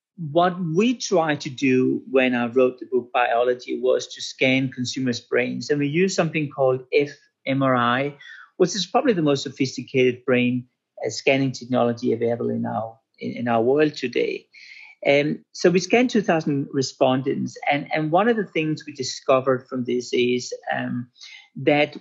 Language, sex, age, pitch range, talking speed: English, male, 40-59, 130-175 Hz, 165 wpm